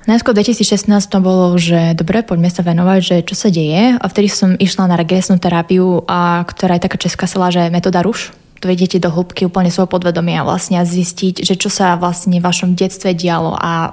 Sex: female